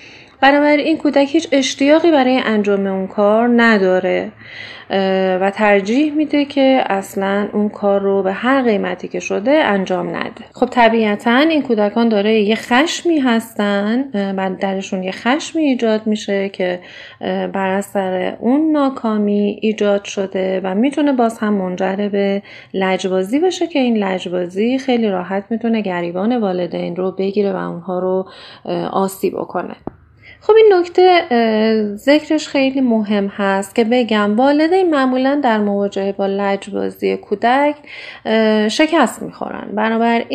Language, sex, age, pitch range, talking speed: Persian, female, 30-49, 195-265 Hz, 130 wpm